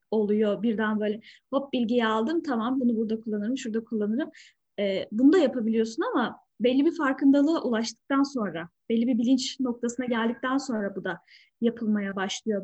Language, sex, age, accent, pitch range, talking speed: Turkish, female, 10-29, native, 220-270 Hz, 150 wpm